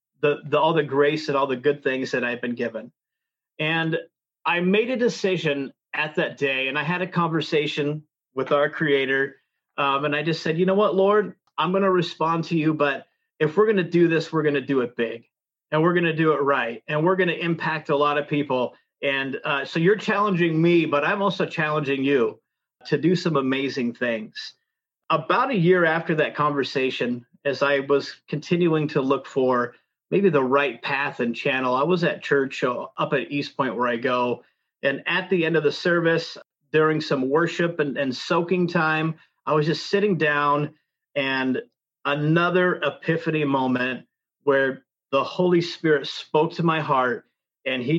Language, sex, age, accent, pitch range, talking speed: English, male, 30-49, American, 140-170 Hz, 190 wpm